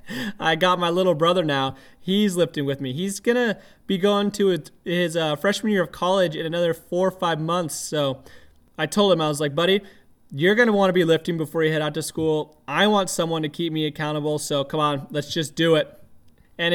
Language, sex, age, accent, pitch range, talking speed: English, male, 20-39, American, 145-185 Hz, 230 wpm